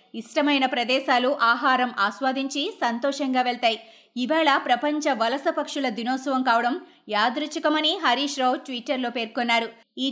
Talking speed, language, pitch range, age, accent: 105 wpm, Telugu, 245-295 Hz, 20-39, native